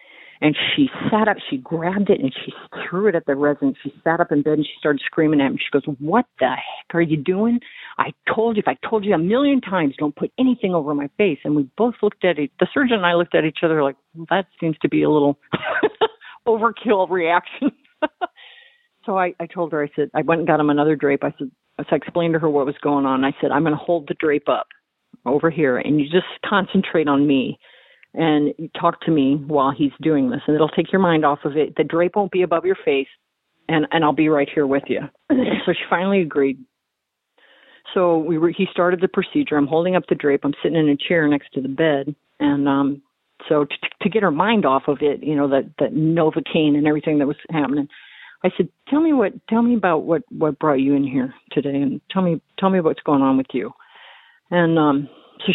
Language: English